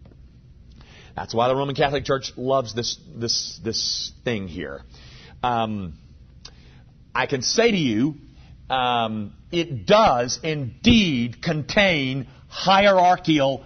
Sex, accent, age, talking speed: male, American, 50-69, 100 wpm